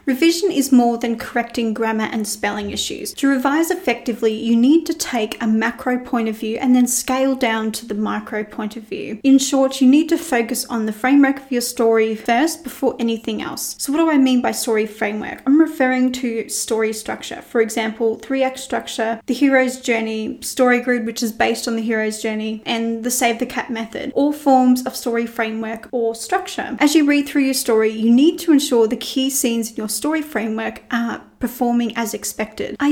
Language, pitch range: English, 220-270 Hz